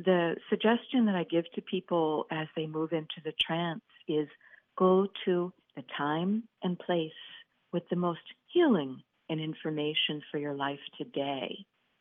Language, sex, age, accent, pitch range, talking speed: English, female, 50-69, American, 160-210 Hz, 150 wpm